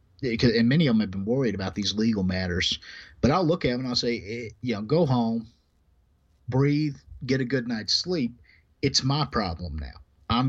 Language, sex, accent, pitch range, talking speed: English, male, American, 90-125 Hz, 200 wpm